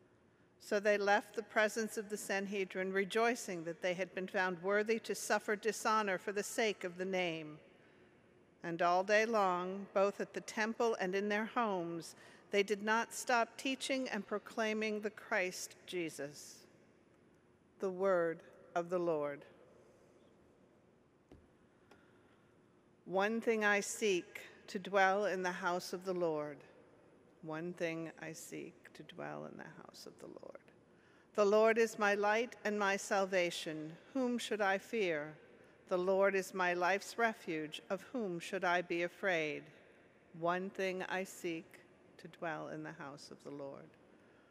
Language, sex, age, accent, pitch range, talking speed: English, female, 50-69, American, 175-215 Hz, 150 wpm